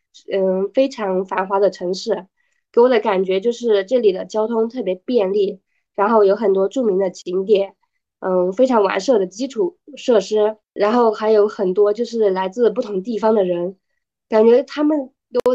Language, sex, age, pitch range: Chinese, female, 20-39, 195-240 Hz